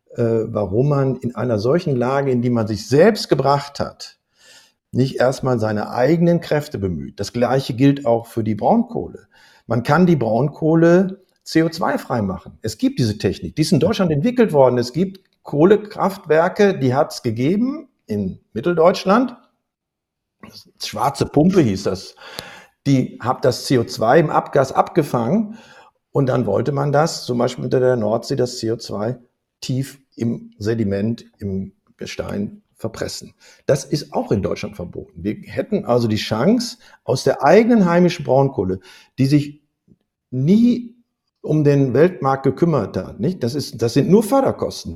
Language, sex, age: German, male, 60-79